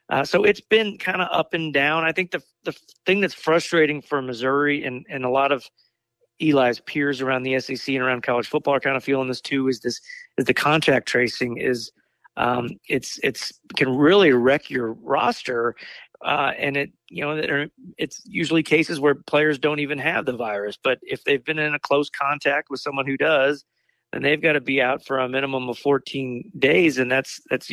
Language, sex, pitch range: English, male, 130-155 Hz